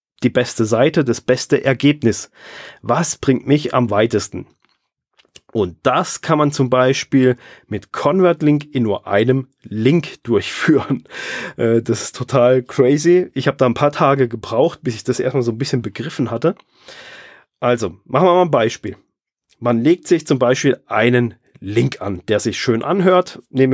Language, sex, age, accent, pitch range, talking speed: German, male, 30-49, German, 120-150 Hz, 160 wpm